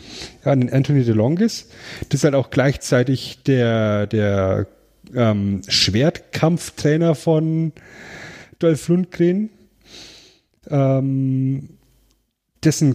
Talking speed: 85 wpm